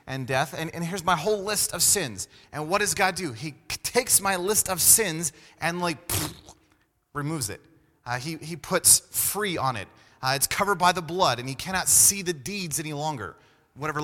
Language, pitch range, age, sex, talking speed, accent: English, 140-185 Hz, 30-49, male, 205 wpm, American